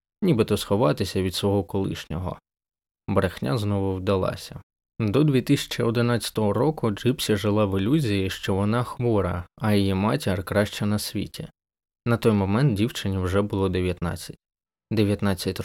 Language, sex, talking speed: Ukrainian, male, 125 wpm